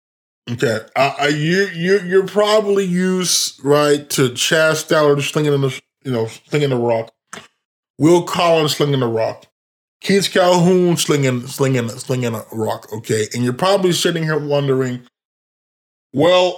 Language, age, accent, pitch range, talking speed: English, 20-39, American, 125-155 Hz, 140 wpm